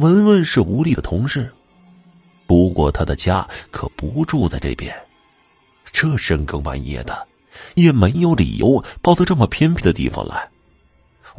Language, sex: Chinese, male